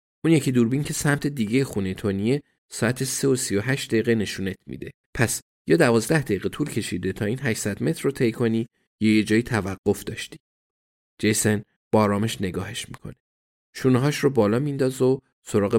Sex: male